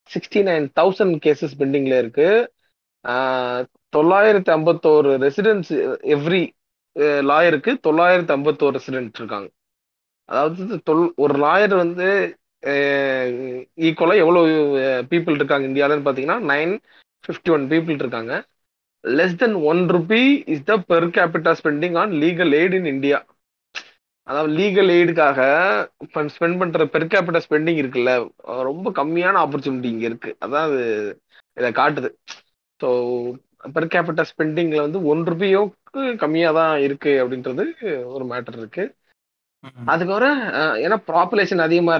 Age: 30-49